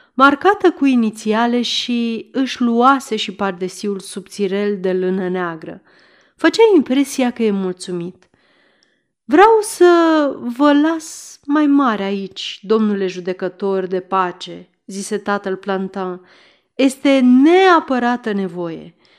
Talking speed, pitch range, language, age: 105 wpm, 195-270 Hz, Romanian, 30-49